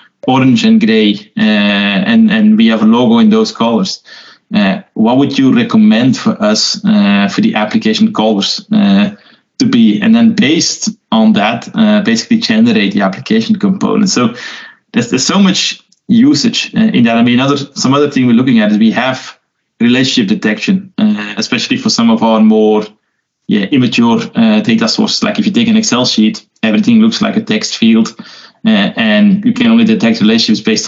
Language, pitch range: English, 190-225 Hz